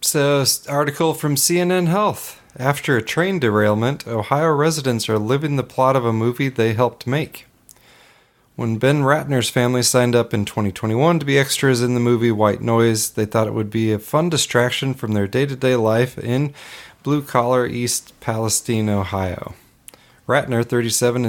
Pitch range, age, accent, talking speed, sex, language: 110-135 Hz, 30-49, American, 160 wpm, male, English